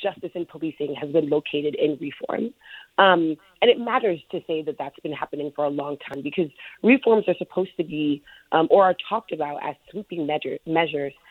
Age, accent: 30-49, American